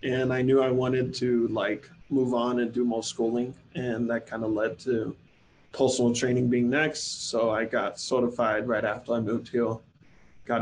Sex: male